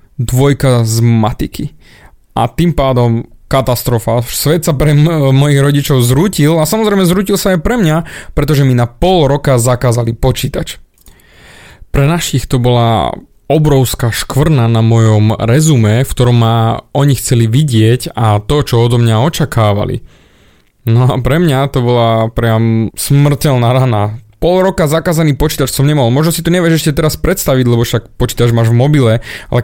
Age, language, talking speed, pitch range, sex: 20-39, Slovak, 160 wpm, 120-150 Hz, male